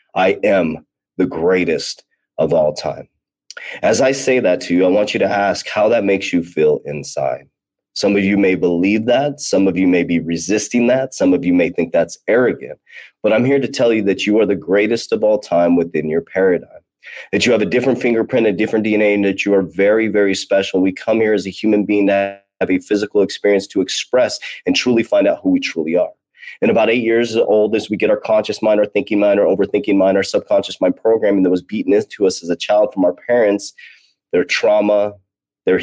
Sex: male